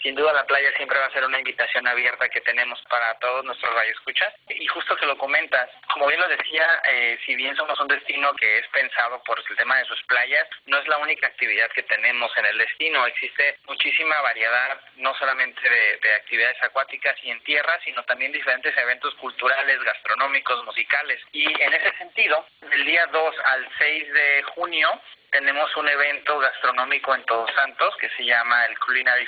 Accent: Mexican